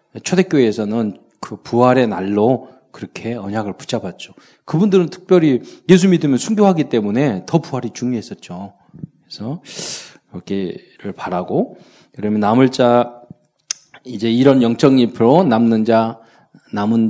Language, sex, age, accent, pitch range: Korean, male, 40-59, native, 115-175 Hz